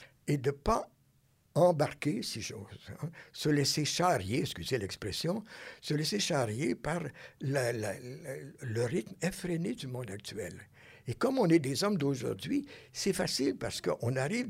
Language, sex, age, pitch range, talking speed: French, male, 60-79, 120-160 Hz, 155 wpm